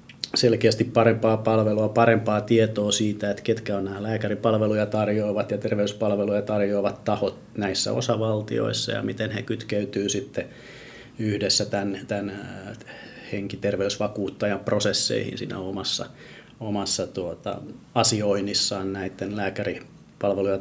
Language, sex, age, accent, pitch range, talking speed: Finnish, male, 30-49, native, 95-110 Hz, 100 wpm